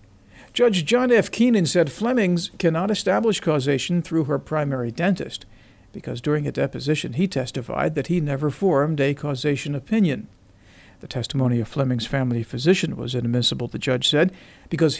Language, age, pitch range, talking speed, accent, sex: English, 50-69, 130-170 Hz, 150 wpm, American, male